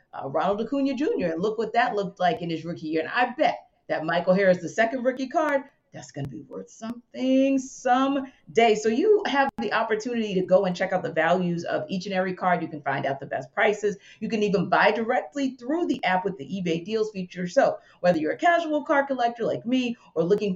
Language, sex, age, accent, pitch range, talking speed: English, female, 40-59, American, 175-240 Hz, 230 wpm